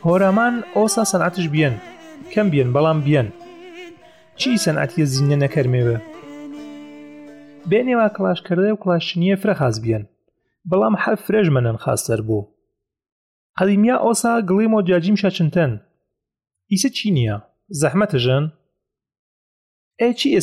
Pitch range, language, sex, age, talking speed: 145-200 Hz, Persian, male, 30-49, 120 wpm